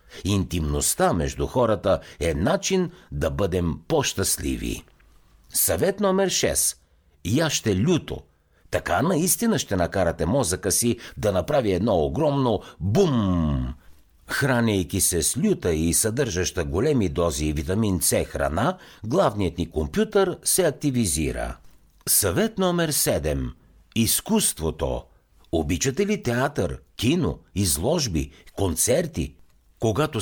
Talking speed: 105 wpm